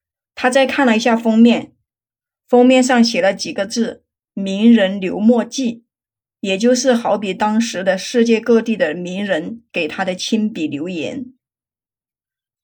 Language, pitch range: Chinese, 190-240 Hz